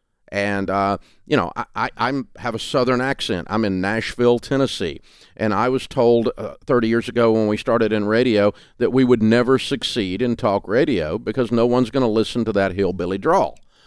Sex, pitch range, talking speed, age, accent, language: male, 110-135 Hz, 200 wpm, 50-69, American, English